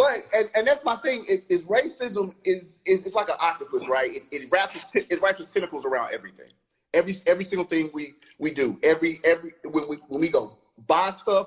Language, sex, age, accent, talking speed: English, male, 30-49, American, 210 wpm